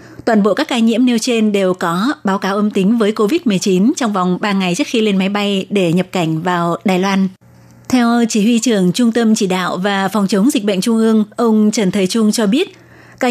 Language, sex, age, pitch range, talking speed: Vietnamese, female, 20-39, 195-230 Hz, 235 wpm